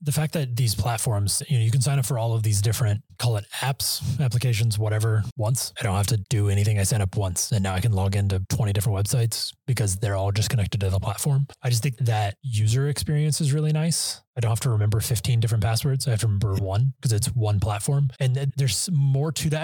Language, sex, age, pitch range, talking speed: English, male, 20-39, 105-135 Hz, 245 wpm